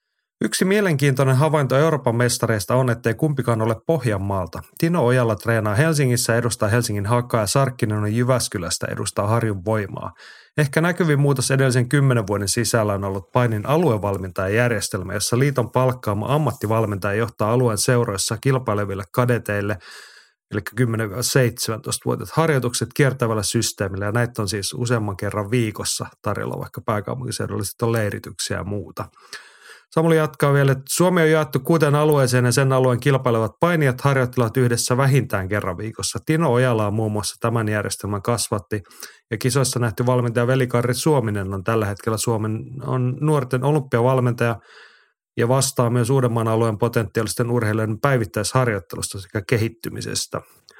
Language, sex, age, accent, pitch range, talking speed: Finnish, male, 30-49, native, 110-135 Hz, 135 wpm